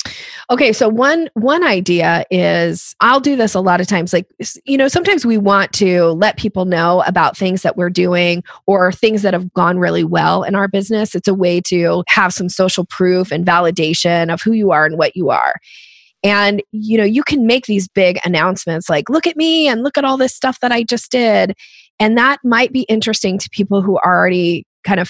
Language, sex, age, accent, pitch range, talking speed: English, female, 20-39, American, 180-240 Hz, 220 wpm